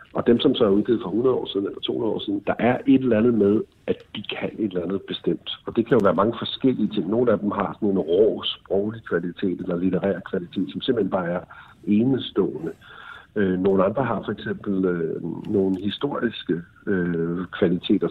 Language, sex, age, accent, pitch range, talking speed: Danish, male, 60-79, native, 90-105 Hz, 200 wpm